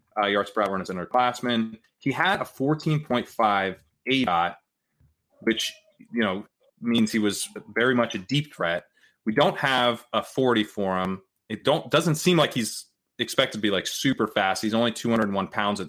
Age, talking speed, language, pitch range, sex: 30-49, 180 wpm, English, 105-130 Hz, male